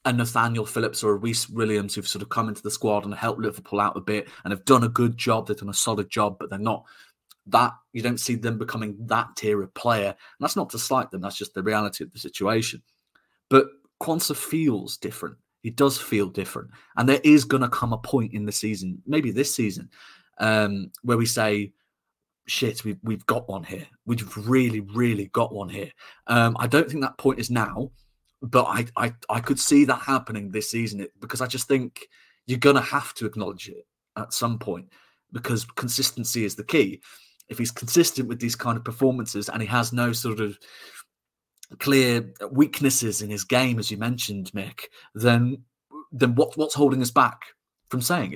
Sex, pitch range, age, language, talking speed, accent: male, 105-130 Hz, 30-49, English, 205 wpm, British